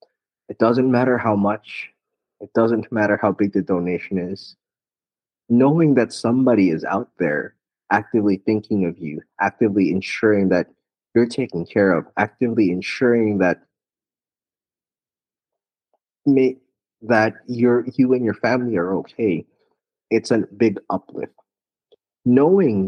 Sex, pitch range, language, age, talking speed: male, 100-120 Hz, English, 30-49, 125 wpm